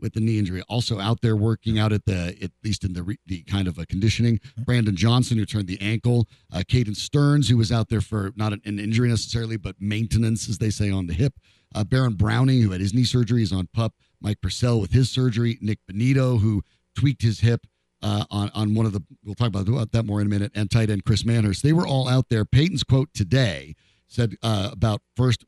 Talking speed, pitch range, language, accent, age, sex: 240 wpm, 100-125 Hz, English, American, 50-69, male